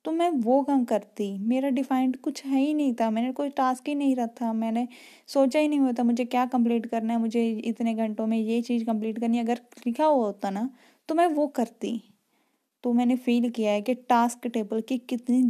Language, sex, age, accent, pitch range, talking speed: Hindi, female, 10-29, native, 220-250 Hz, 215 wpm